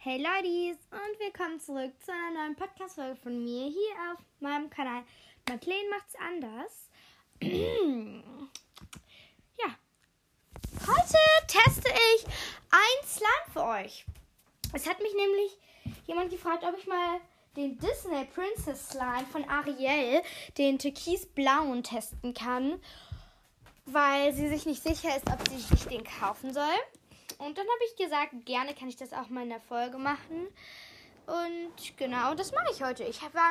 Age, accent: 10-29, German